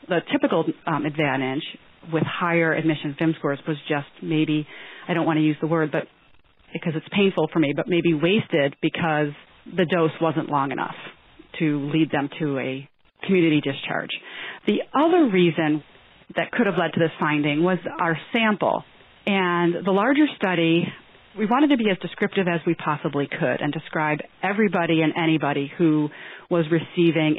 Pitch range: 150-185 Hz